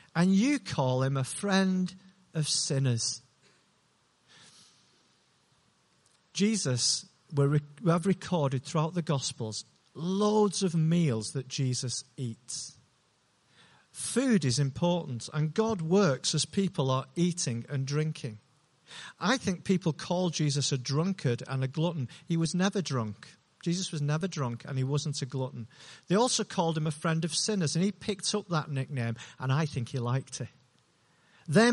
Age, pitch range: 50-69, 130-170 Hz